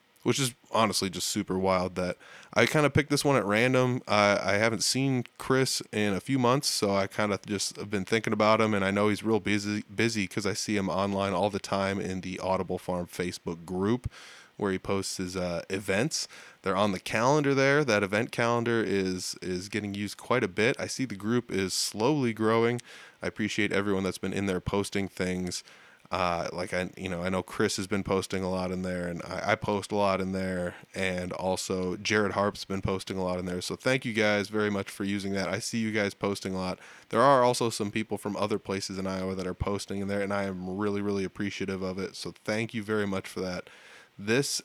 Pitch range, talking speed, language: 95-115 Hz, 230 wpm, English